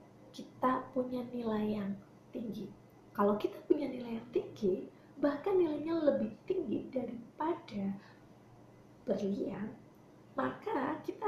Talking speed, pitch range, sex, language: 100 wpm, 210-295 Hz, female, Indonesian